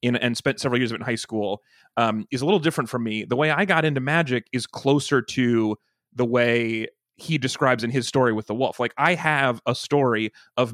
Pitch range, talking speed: 120-145 Hz, 220 wpm